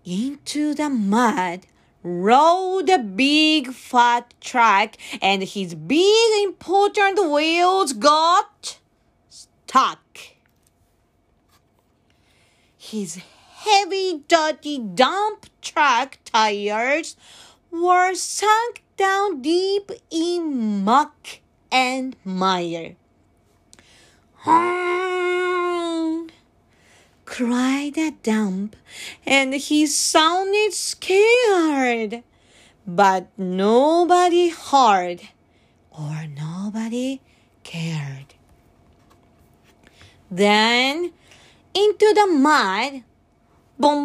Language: Japanese